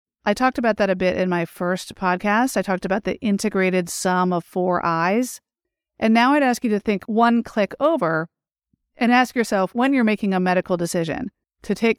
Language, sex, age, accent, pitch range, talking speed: English, female, 40-59, American, 180-220 Hz, 200 wpm